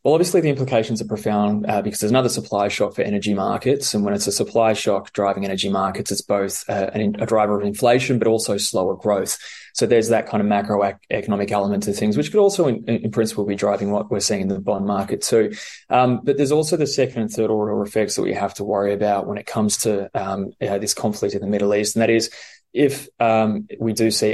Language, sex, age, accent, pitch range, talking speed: English, male, 20-39, Australian, 105-120 Hz, 235 wpm